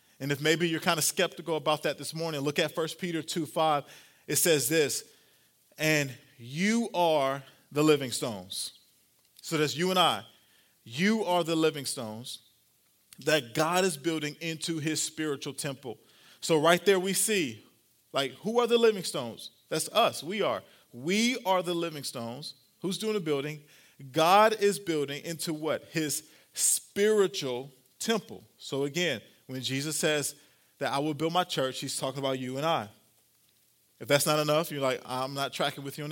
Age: 40-59